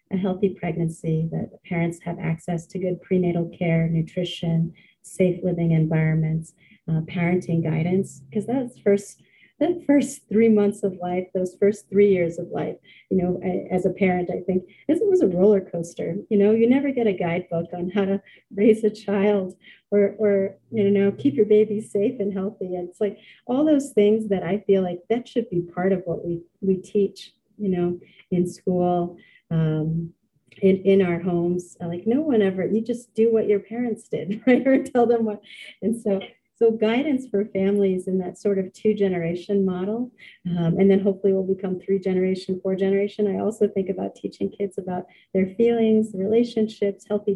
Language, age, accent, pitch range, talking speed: English, 40-59, American, 180-210 Hz, 185 wpm